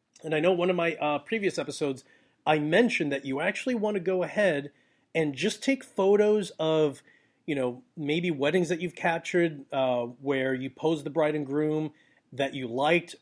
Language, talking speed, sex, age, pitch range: English, 185 wpm, male, 30-49, 145-195 Hz